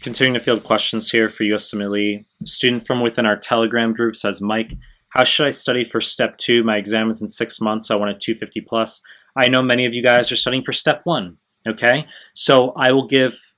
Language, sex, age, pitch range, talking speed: English, male, 20-39, 110-125 Hz, 215 wpm